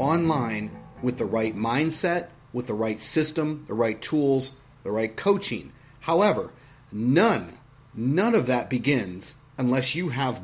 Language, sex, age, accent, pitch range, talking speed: English, male, 30-49, American, 120-155 Hz, 140 wpm